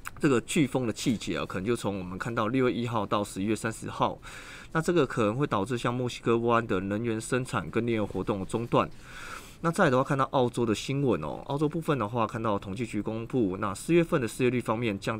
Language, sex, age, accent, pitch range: Chinese, male, 20-39, native, 105-130 Hz